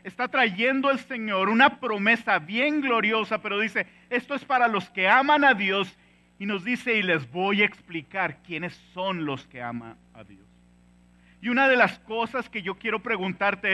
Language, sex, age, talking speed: English, male, 50-69, 185 wpm